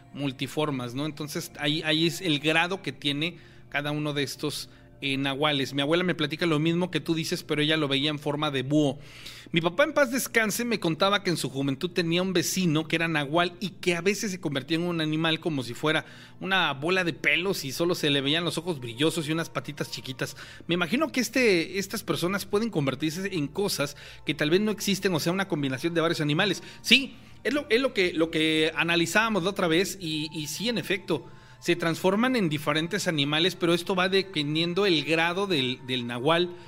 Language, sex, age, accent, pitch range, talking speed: Spanish, male, 40-59, Mexican, 145-185 Hz, 215 wpm